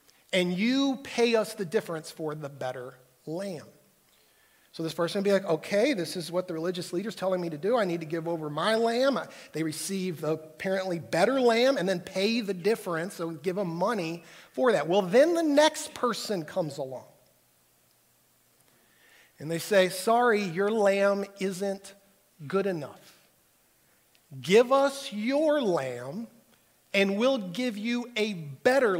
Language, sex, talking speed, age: English, male, 165 wpm, 50-69